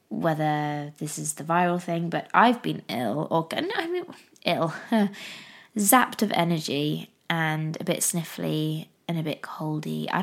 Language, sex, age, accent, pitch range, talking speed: English, female, 20-39, British, 155-200 Hz, 160 wpm